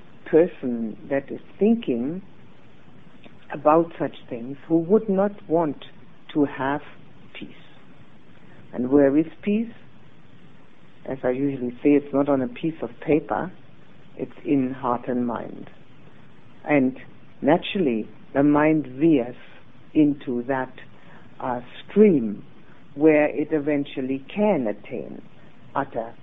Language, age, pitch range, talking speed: English, 60-79, 130-165 Hz, 110 wpm